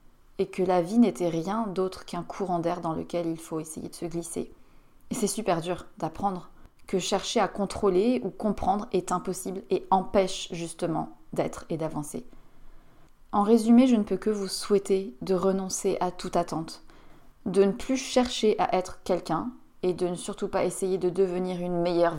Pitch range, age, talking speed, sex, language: 175-200 Hz, 30-49, 180 wpm, female, French